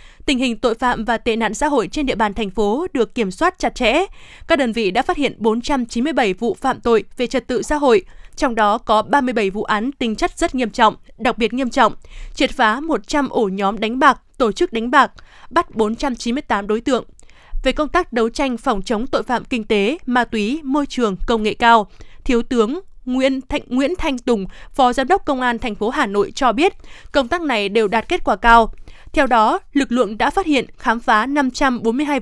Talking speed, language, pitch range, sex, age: 220 wpm, Vietnamese, 225-280 Hz, female, 20-39